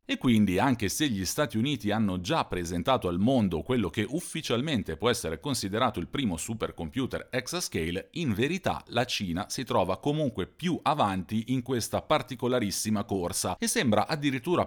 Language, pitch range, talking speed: Italian, 95-130 Hz, 155 wpm